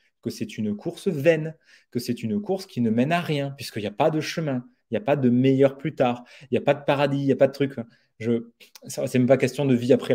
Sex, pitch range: male, 130-185 Hz